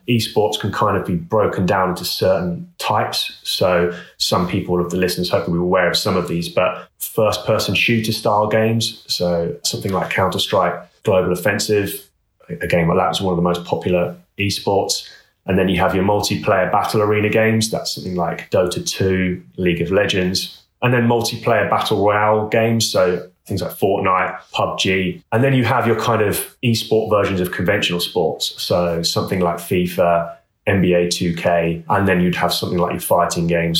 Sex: male